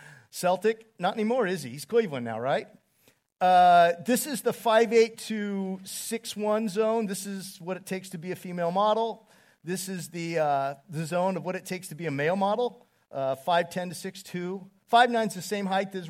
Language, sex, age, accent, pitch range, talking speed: English, male, 40-59, American, 165-205 Hz, 195 wpm